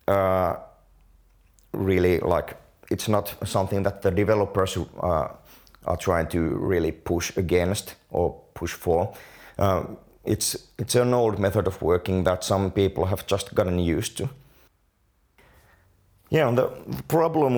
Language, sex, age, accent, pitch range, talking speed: English, male, 30-49, Finnish, 90-110 Hz, 130 wpm